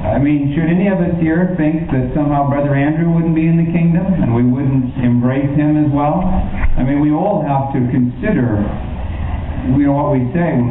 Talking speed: 215 wpm